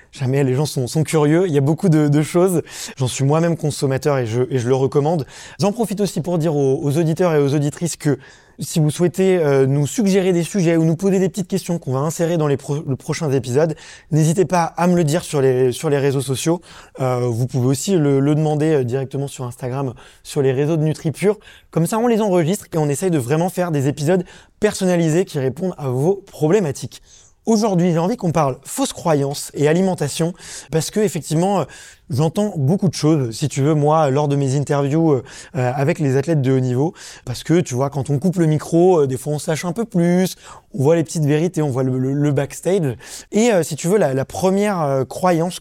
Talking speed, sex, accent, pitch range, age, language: 215 wpm, male, French, 140-175 Hz, 20-39, French